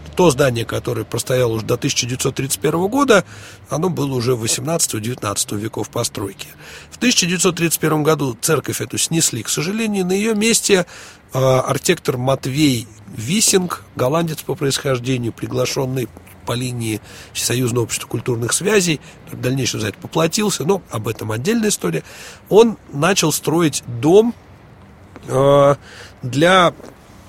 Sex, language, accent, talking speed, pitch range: male, Russian, native, 115 wpm, 115-160 Hz